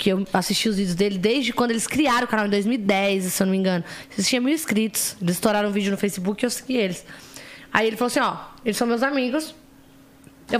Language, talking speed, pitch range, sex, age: Portuguese, 250 wpm, 195-245 Hz, female, 20-39